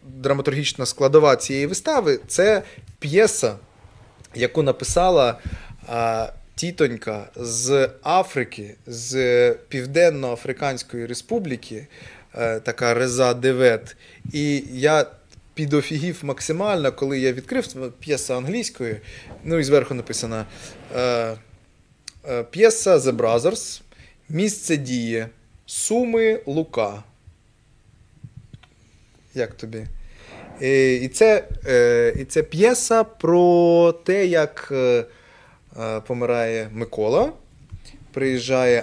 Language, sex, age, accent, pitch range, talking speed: Ukrainian, male, 20-39, native, 115-145 Hz, 85 wpm